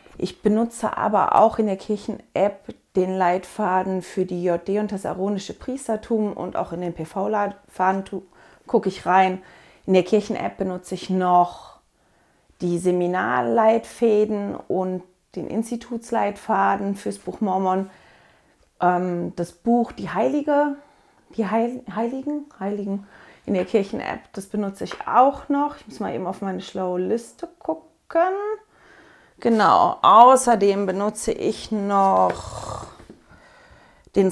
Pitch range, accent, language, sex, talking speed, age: 190-235 Hz, German, German, female, 120 wpm, 30-49